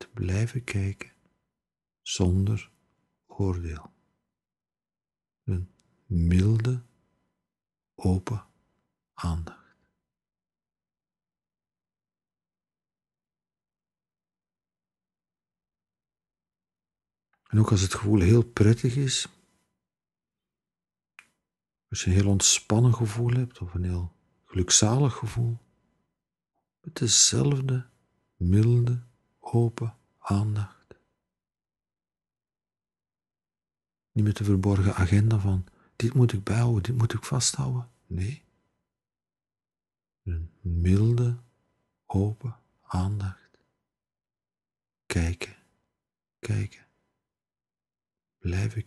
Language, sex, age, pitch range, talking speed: Dutch, male, 60-79, 95-120 Hz, 70 wpm